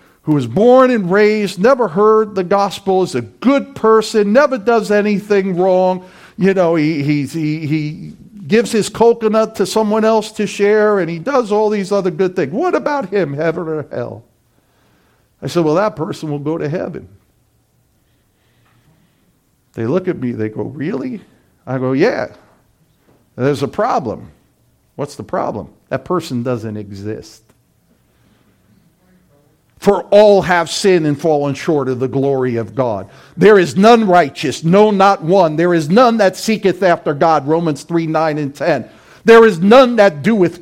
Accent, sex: American, male